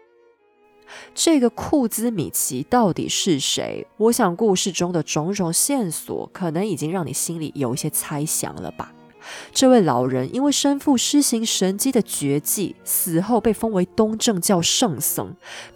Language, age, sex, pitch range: Chinese, 20-39, female, 170-270 Hz